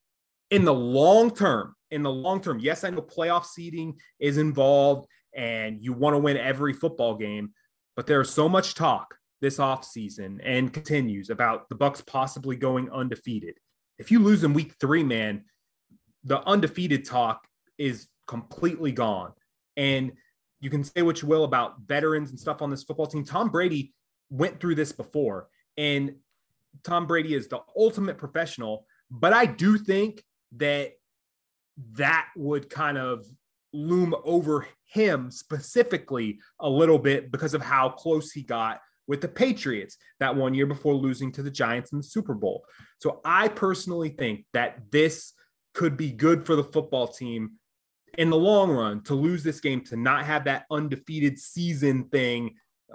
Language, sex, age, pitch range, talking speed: English, male, 30-49, 130-160 Hz, 165 wpm